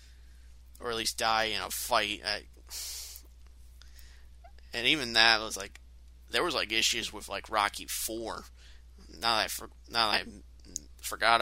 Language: English